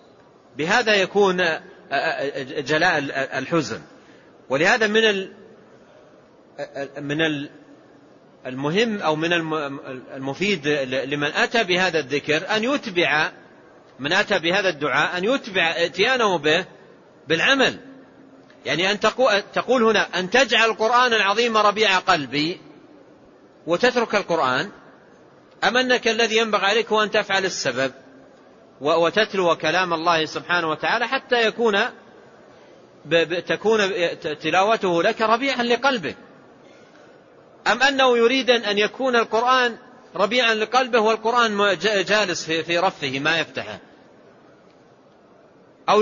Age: 40-59